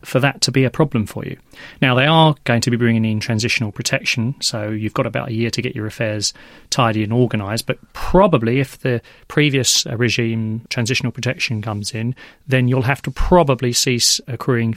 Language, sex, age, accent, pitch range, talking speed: English, male, 30-49, British, 120-145 Hz, 195 wpm